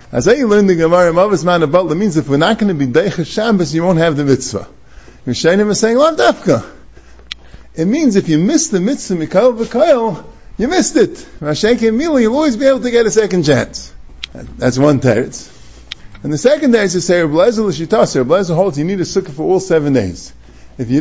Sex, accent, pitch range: male, American, 135-220 Hz